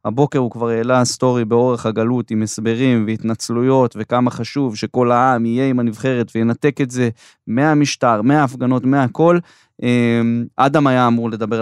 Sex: male